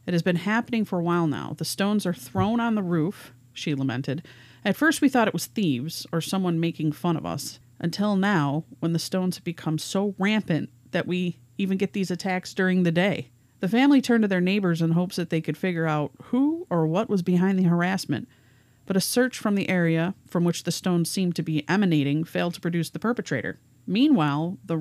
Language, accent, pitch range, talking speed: English, American, 155-195 Hz, 215 wpm